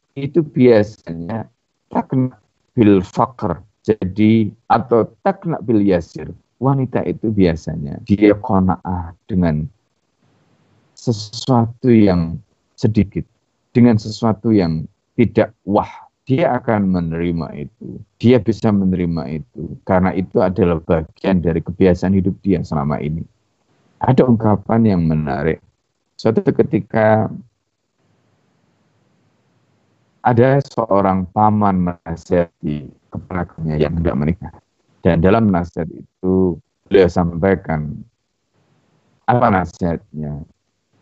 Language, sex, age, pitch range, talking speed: Indonesian, male, 50-69, 85-115 Hz, 95 wpm